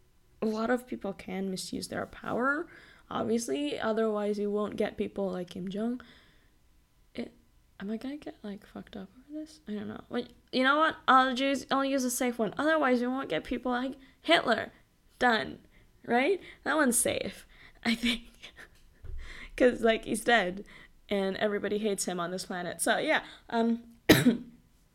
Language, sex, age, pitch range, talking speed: English, female, 10-29, 195-250 Hz, 170 wpm